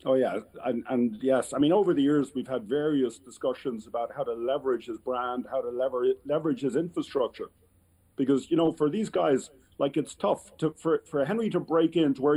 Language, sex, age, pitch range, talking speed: English, male, 40-59, 125-160 Hz, 210 wpm